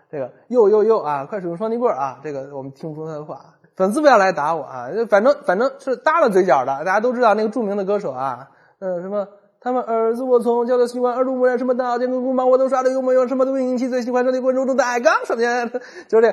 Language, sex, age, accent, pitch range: Chinese, male, 20-39, native, 165-250 Hz